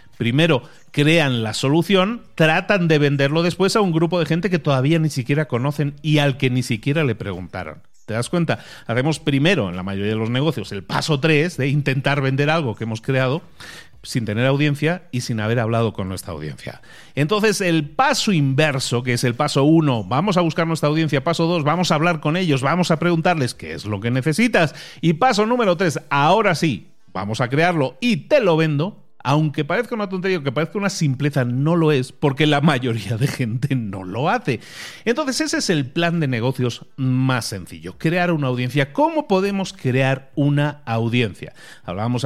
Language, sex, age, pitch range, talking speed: Spanish, male, 40-59, 125-170 Hz, 190 wpm